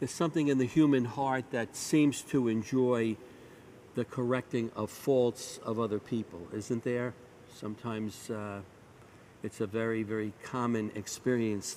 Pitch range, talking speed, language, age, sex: 105-125 Hz, 140 wpm, English, 60-79, male